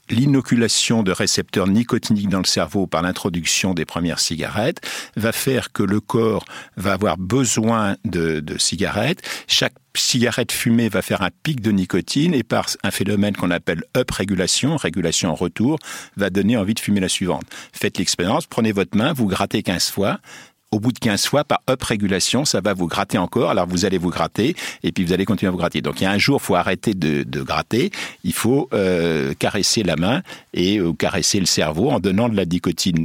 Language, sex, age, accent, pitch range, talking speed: French, male, 50-69, French, 90-120 Hz, 205 wpm